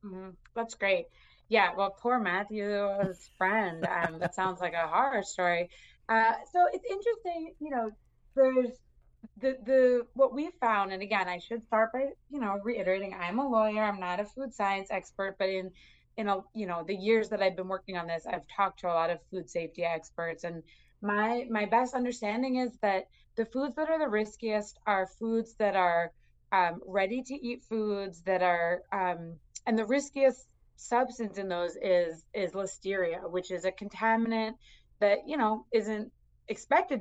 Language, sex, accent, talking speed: English, female, American, 180 wpm